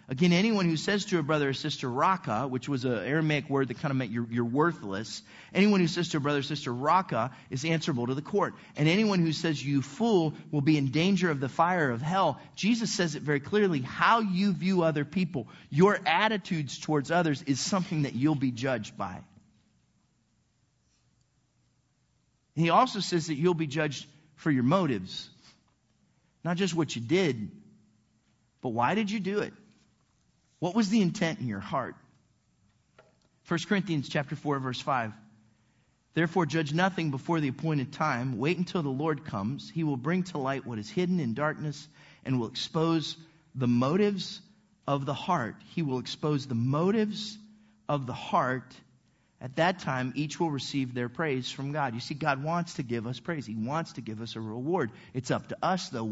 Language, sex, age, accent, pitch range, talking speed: English, male, 40-59, American, 130-175 Hz, 185 wpm